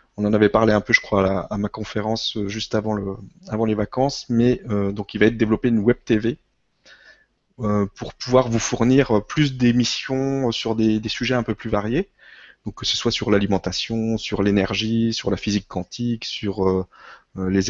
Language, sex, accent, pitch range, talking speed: French, male, French, 100-120 Hz, 200 wpm